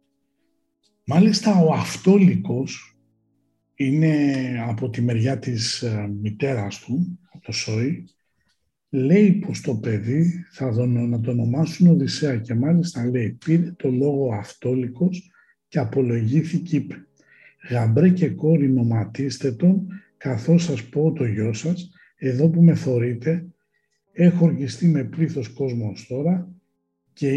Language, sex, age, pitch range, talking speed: Greek, male, 60-79, 120-170 Hz, 110 wpm